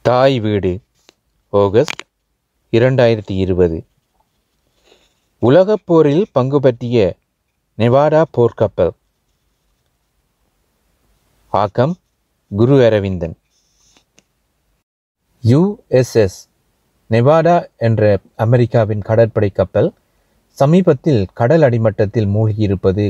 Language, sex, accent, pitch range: Tamil, male, native, 100-130 Hz